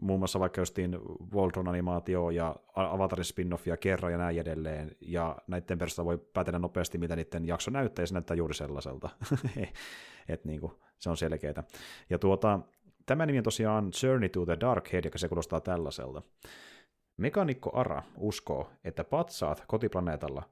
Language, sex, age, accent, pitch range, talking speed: Finnish, male, 30-49, native, 85-105 Hz, 150 wpm